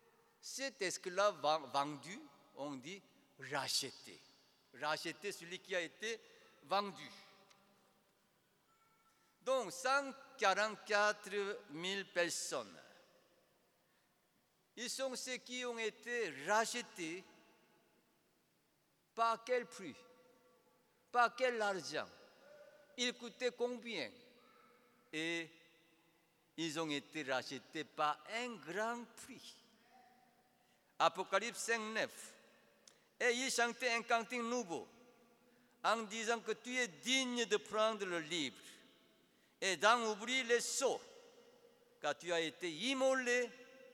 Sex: male